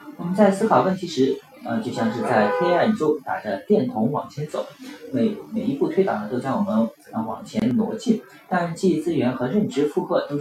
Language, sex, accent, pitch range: Chinese, male, native, 140-220 Hz